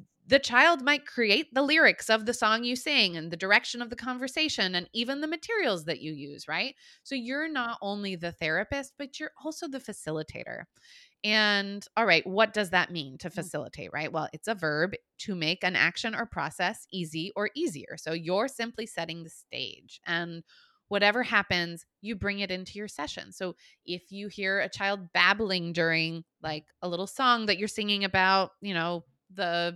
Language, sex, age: English, female, 20-39